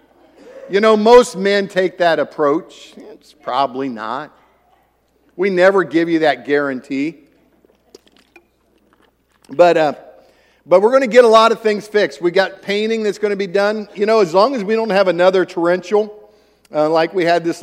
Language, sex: English, male